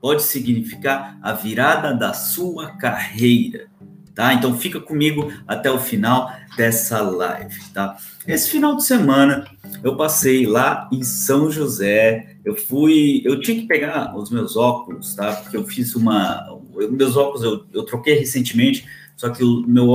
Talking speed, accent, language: 155 wpm, Brazilian, Portuguese